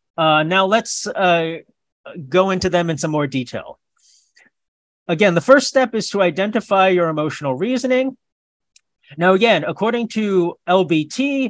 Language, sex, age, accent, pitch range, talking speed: English, male, 40-59, American, 150-210 Hz, 135 wpm